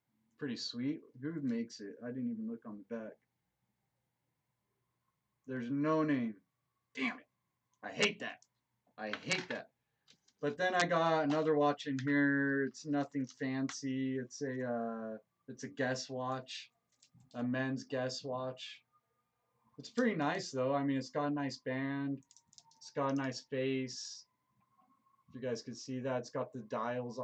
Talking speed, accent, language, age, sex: 155 wpm, American, English, 30-49, male